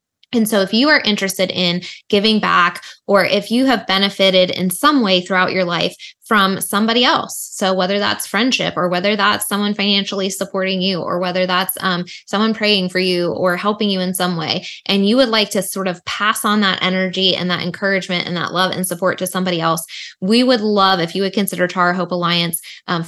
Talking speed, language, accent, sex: 210 wpm, English, American, female